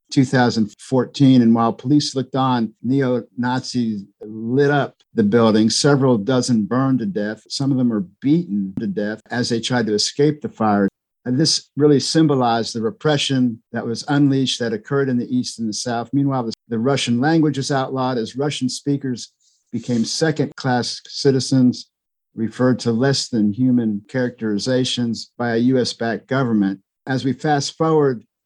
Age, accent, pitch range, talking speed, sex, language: 50-69, American, 115-140 Hz, 150 wpm, male, English